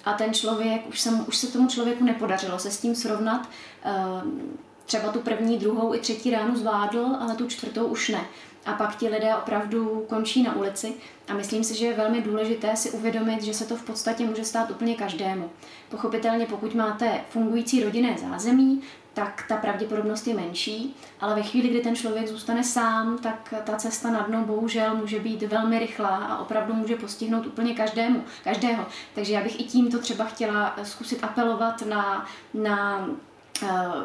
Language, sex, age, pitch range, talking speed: Czech, female, 20-39, 220-255 Hz, 175 wpm